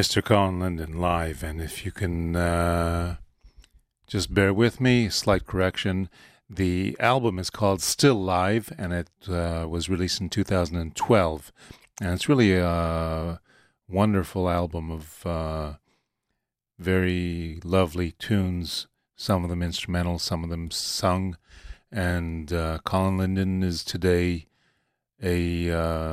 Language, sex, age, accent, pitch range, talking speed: English, male, 40-59, American, 85-100 Hz, 125 wpm